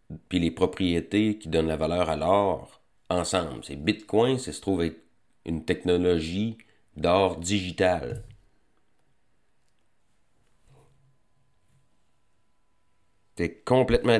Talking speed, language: 95 wpm, French